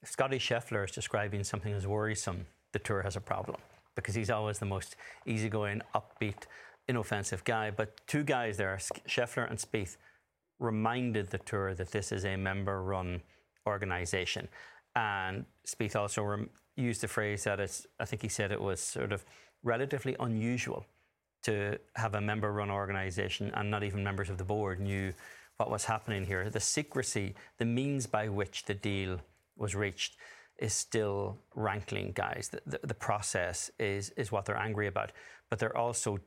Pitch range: 100-110 Hz